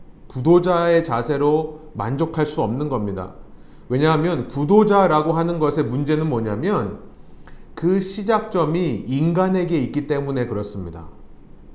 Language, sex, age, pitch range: Korean, male, 40-59, 145-195 Hz